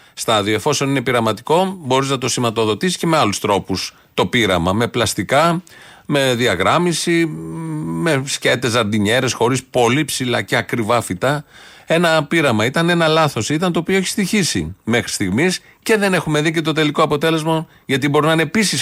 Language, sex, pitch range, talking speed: Greek, male, 110-145 Hz, 165 wpm